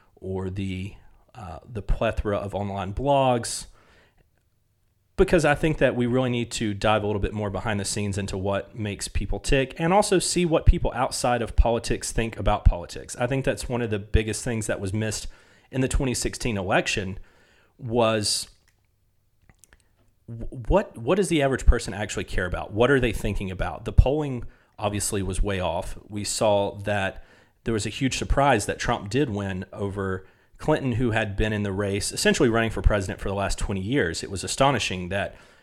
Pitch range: 100-120 Hz